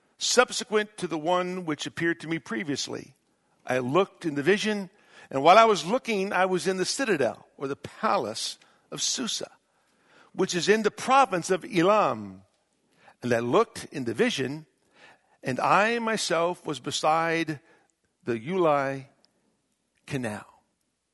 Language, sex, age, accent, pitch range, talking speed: English, male, 60-79, American, 180-235 Hz, 140 wpm